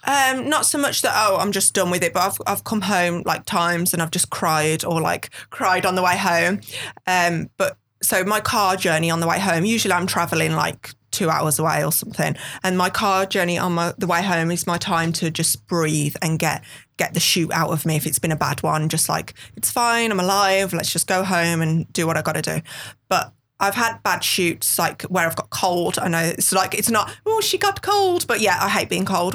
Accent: British